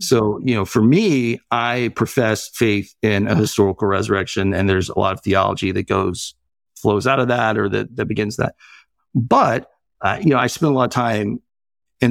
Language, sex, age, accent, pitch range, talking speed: English, male, 50-69, American, 105-130 Hz, 200 wpm